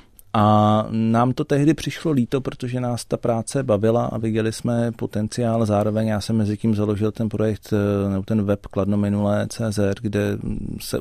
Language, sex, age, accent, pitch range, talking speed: Czech, male, 40-59, native, 105-115 Hz, 165 wpm